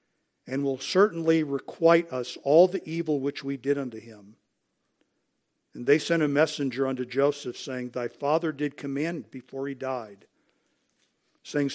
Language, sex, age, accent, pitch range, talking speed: English, male, 50-69, American, 130-155 Hz, 150 wpm